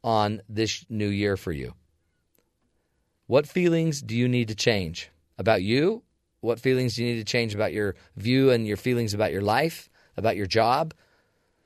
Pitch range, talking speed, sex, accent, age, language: 100-130 Hz, 175 wpm, male, American, 40-59, English